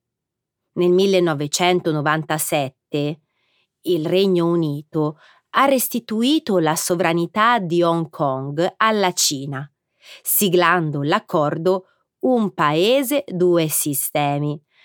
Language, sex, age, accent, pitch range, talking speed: Italian, female, 30-49, native, 150-195 Hz, 80 wpm